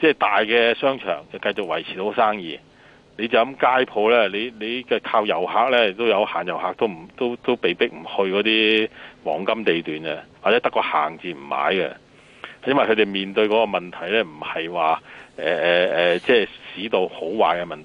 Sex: male